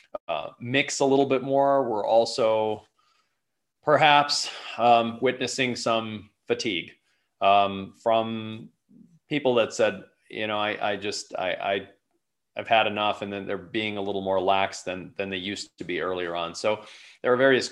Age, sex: 30-49, male